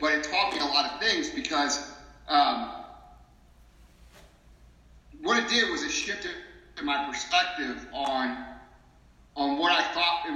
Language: English